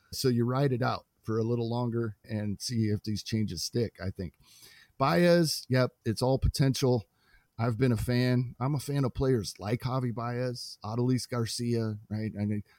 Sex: male